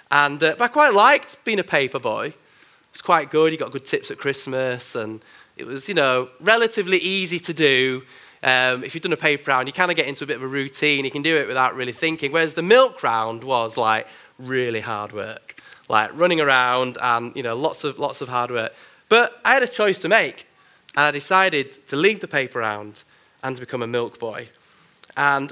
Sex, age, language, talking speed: male, 20-39, English, 225 wpm